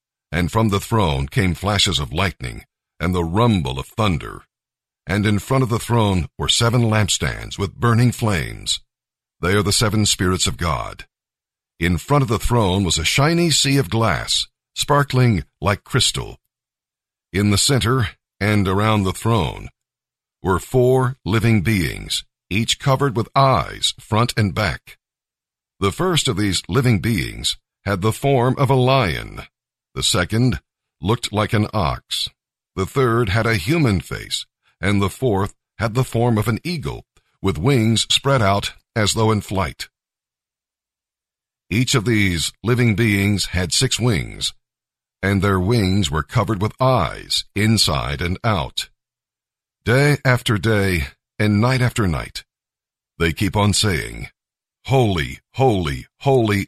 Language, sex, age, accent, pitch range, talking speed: English, male, 50-69, American, 95-120 Hz, 145 wpm